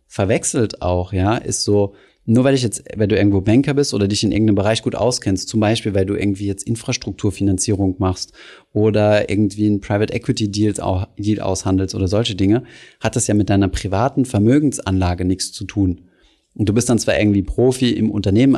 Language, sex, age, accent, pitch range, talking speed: German, male, 30-49, German, 95-115 Hz, 185 wpm